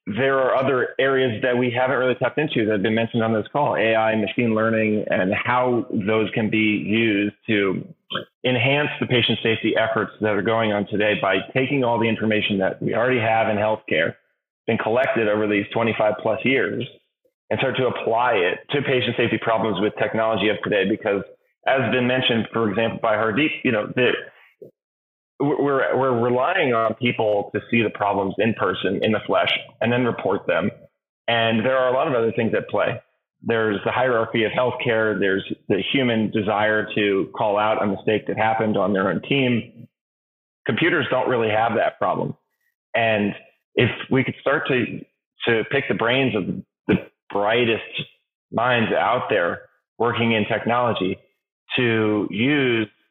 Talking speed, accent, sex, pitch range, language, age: 175 wpm, American, male, 105-125 Hz, English, 30-49